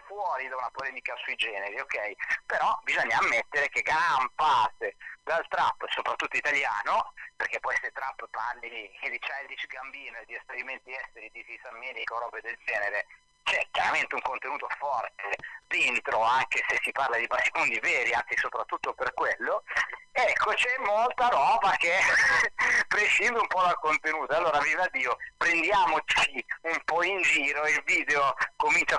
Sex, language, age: male, Italian, 40-59